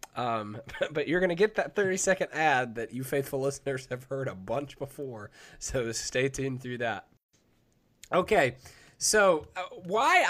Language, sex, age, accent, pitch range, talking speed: English, male, 20-39, American, 130-185 Hz, 150 wpm